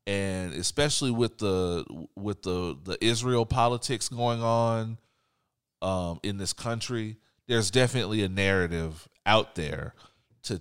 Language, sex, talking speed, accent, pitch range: English, male, 125 wpm, American, 90-120 Hz